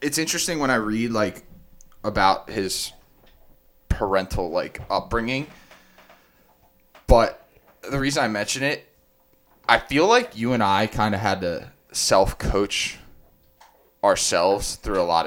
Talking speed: 125 wpm